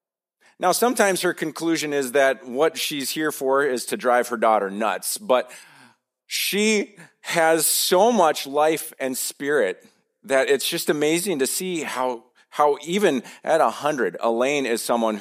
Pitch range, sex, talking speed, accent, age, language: 120-160 Hz, male, 155 wpm, American, 40-59, English